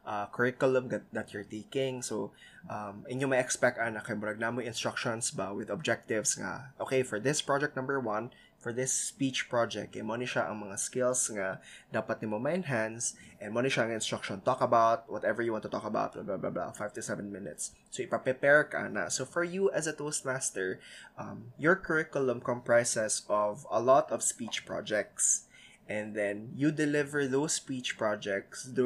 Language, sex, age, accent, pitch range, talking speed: Filipino, male, 20-39, native, 110-135 Hz, 175 wpm